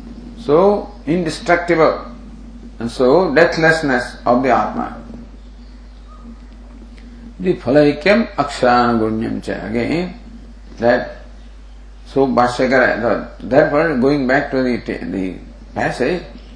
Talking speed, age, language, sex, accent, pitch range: 85 wpm, 50-69, English, male, Indian, 140-235 Hz